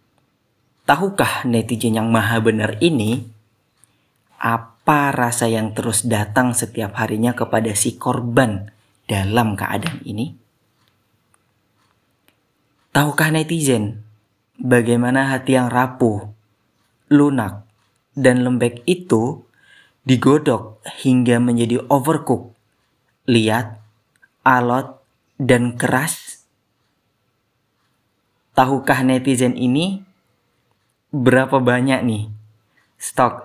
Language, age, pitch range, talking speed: Indonesian, 30-49, 110-130 Hz, 80 wpm